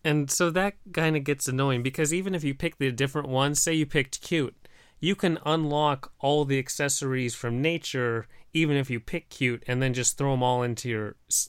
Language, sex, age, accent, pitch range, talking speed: English, male, 30-49, American, 130-155 Hz, 210 wpm